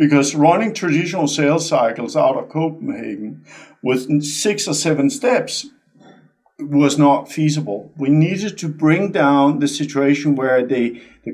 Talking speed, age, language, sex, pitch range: 140 wpm, 50-69, English, male, 135-180 Hz